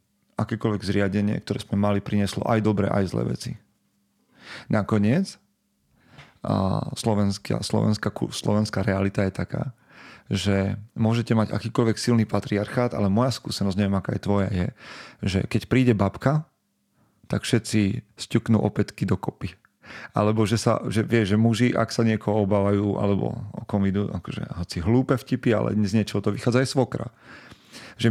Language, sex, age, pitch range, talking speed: Slovak, male, 40-59, 100-115 Hz, 145 wpm